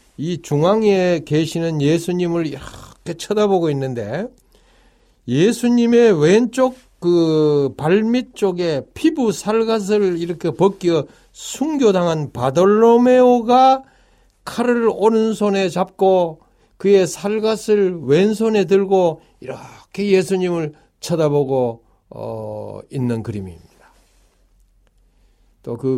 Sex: male